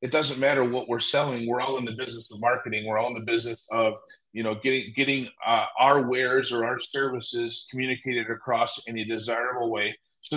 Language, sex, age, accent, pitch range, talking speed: English, male, 30-49, American, 115-130 Hz, 210 wpm